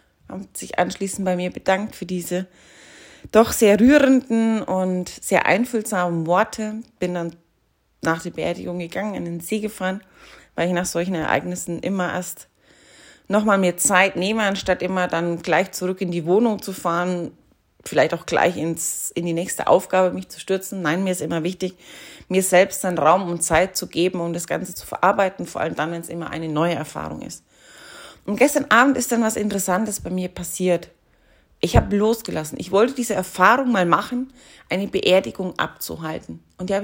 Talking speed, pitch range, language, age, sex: 180 wpm, 175-215 Hz, German, 30-49, female